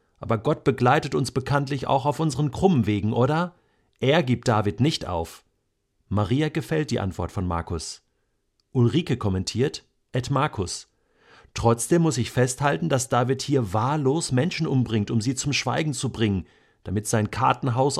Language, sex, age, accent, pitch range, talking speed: German, male, 50-69, German, 100-140 Hz, 150 wpm